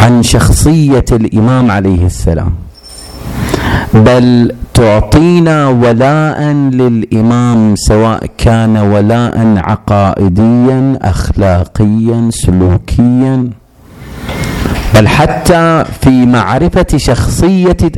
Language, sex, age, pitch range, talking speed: Arabic, male, 40-59, 100-125 Hz, 65 wpm